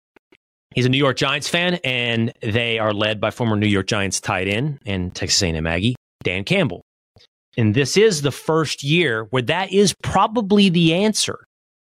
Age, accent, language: 30-49, American, English